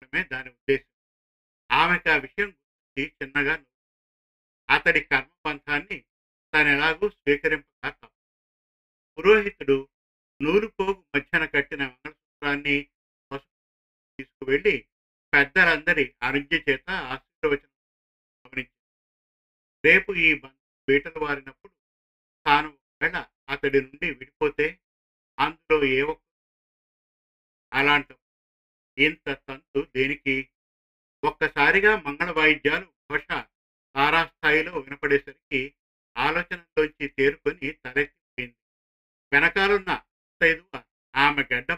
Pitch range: 135-160 Hz